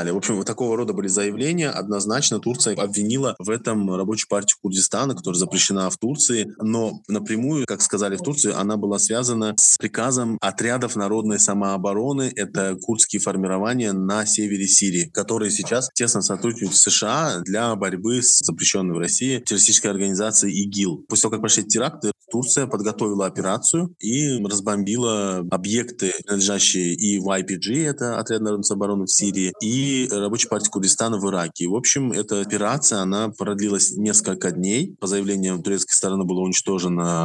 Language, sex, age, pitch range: Russian, male, 20-39, 95-115 Hz